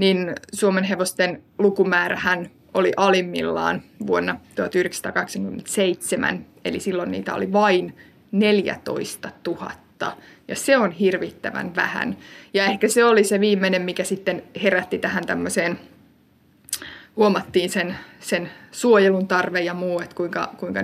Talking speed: 120 wpm